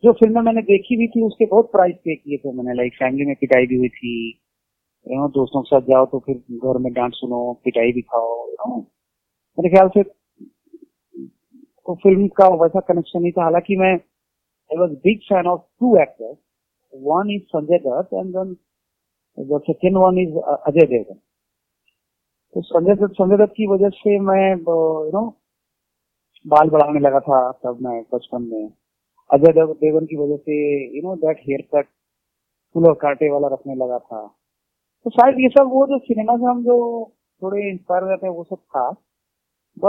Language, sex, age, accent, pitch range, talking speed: Hindi, male, 40-59, native, 145-210 Hz, 125 wpm